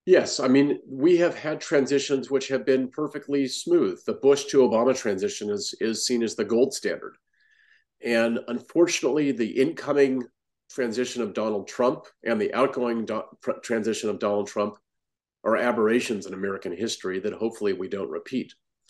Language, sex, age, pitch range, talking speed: English, male, 40-59, 115-170 Hz, 155 wpm